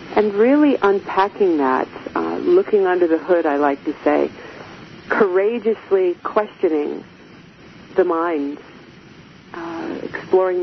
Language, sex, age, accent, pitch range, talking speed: English, female, 40-59, American, 160-205 Hz, 105 wpm